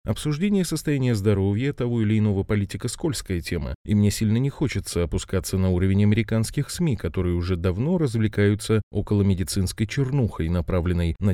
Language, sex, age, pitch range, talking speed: Russian, male, 20-39, 95-120 Hz, 150 wpm